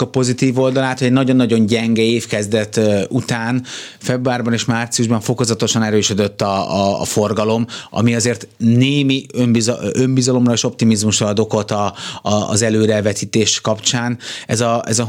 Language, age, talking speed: Hungarian, 30-49, 140 wpm